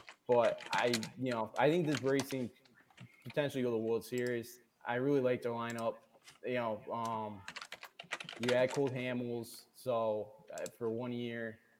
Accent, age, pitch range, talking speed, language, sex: American, 20-39, 115-135 Hz, 160 wpm, English, male